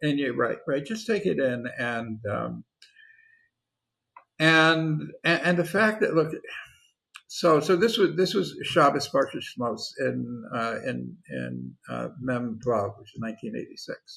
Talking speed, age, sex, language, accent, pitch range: 145 wpm, 50-69, male, English, American, 125-185 Hz